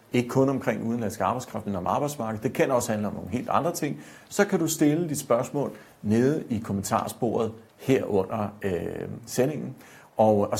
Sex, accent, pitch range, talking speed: male, native, 105-130 Hz, 180 wpm